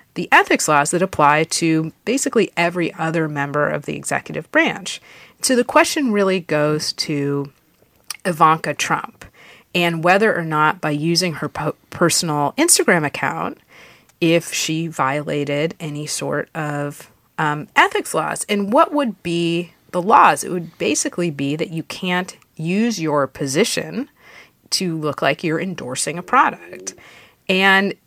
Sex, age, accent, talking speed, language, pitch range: female, 30-49, American, 140 wpm, English, 160-225 Hz